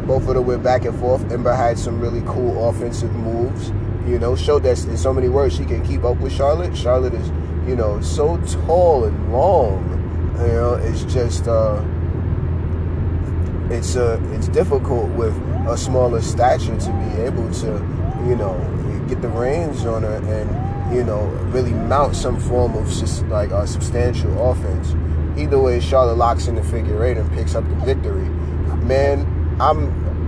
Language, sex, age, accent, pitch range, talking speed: English, male, 20-39, American, 80-105 Hz, 175 wpm